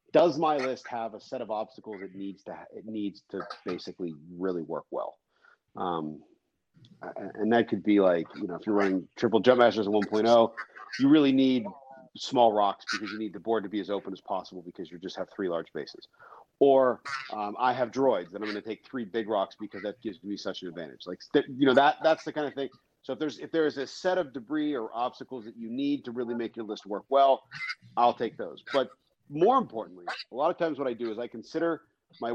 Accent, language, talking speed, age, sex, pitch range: American, English, 235 wpm, 40-59, male, 105-135 Hz